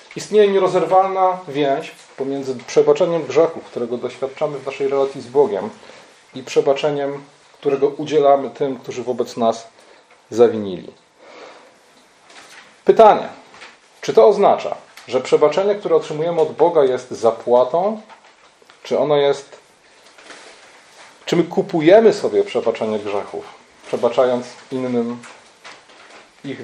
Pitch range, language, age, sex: 130-200 Hz, Polish, 30-49, male